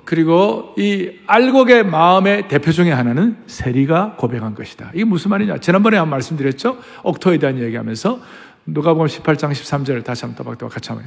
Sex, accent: male, native